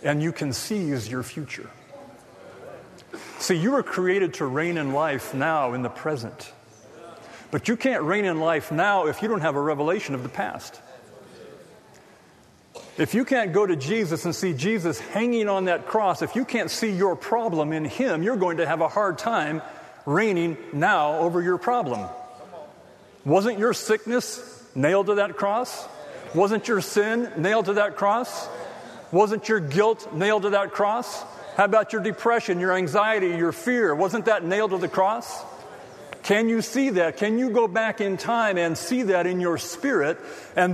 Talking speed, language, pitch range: 175 wpm, English, 170-220 Hz